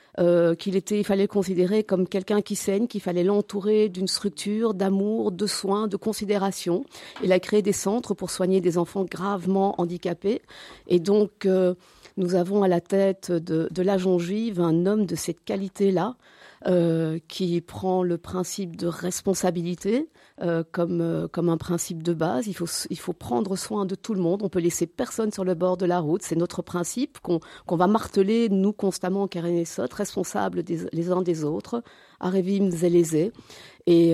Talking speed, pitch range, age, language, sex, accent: 185 wpm, 175-205 Hz, 40-59, French, female, French